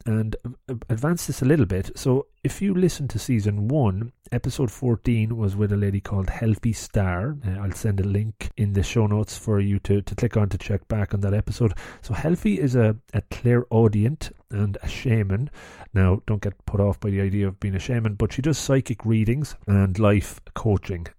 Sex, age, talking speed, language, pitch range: male, 30-49, 205 wpm, English, 100-120 Hz